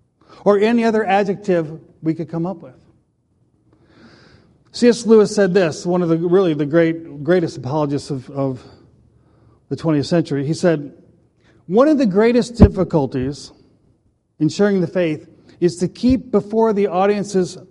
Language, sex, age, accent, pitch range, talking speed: English, male, 50-69, American, 155-205 Hz, 145 wpm